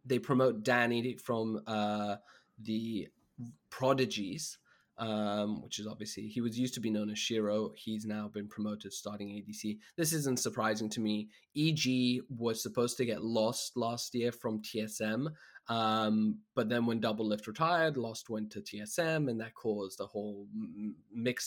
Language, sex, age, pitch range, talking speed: English, male, 20-39, 105-125 Hz, 160 wpm